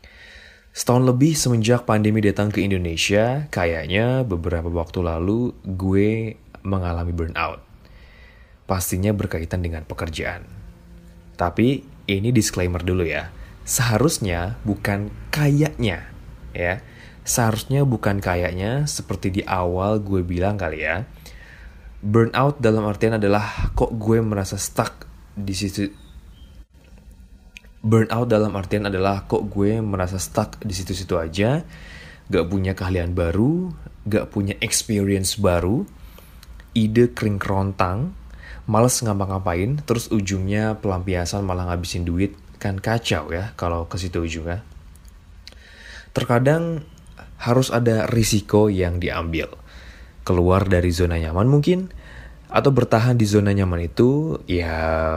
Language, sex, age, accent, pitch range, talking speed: Indonesian, male, 20-39, native, 85-110 Hz, 110 wpm